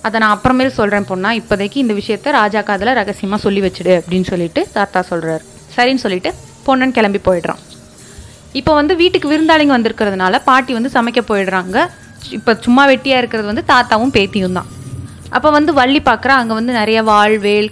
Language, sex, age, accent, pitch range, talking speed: Tamil, female, 30-49, native, 200-255 Hz, 165 wpm